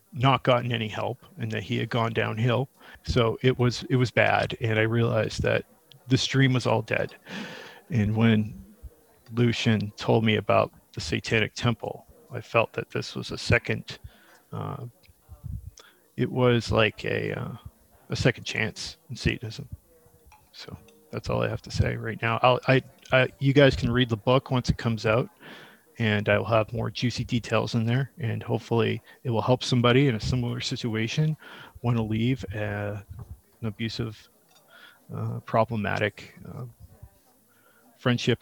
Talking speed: 160 wpm